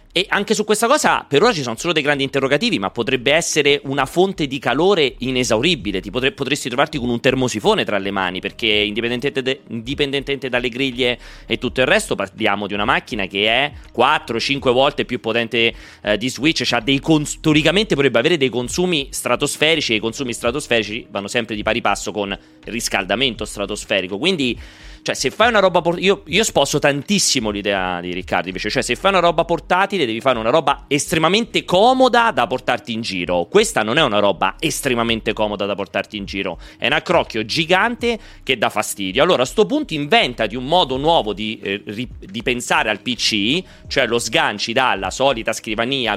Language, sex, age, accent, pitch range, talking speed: Italian, male, 30-49, native, 110-155 Hz, 185 wpm